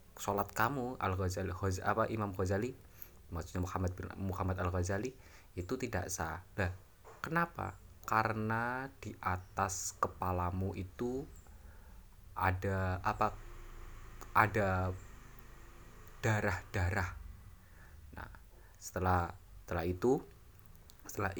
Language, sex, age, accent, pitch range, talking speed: Indonesian, male, 20-39, native, 90-105 Hz, 85 wpm